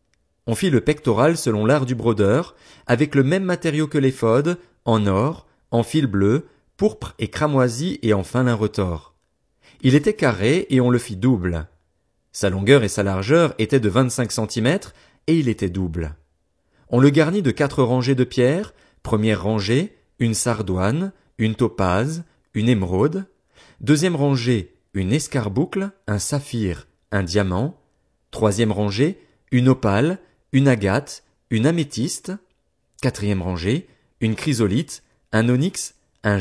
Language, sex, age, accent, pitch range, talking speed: French, male, 40-59, French, 105-145 Hz, 145 wpm